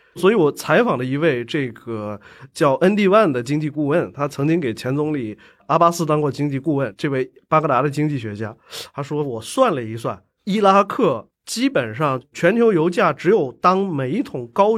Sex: male